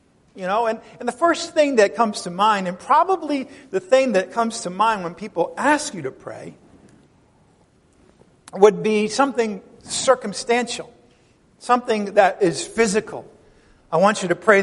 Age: 50-69